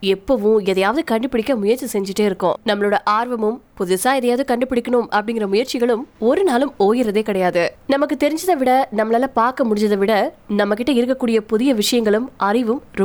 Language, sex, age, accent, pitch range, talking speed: Tamil, female, 20-39, native, 205-260 Hz, 45 wpm